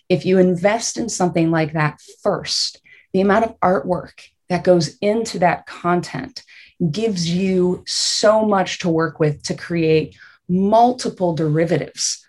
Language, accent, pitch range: English, American, 160-195 Hz